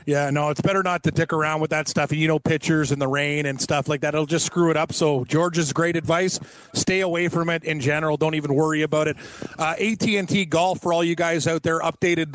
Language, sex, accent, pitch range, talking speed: English, male, American, 155-180 Hz, 255 wpm